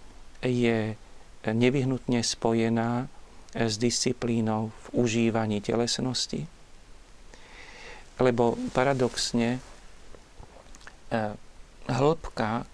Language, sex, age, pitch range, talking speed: Slovak, male, 40-59, 110-125 Hz, 50 wpm